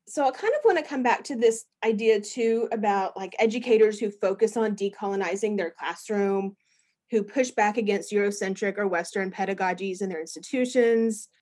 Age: 30-49